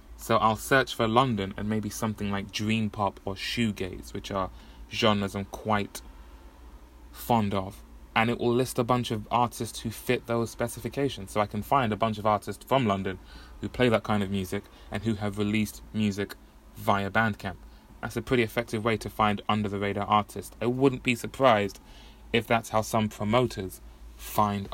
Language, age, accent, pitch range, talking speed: English, 20-39, British, 100-125 Hz, 180 wpm